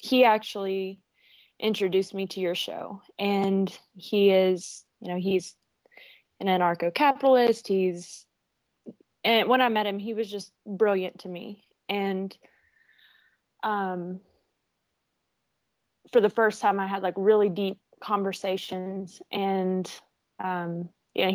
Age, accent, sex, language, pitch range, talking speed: 20-39, American, female, English, 185-210 Hz, 120 wpm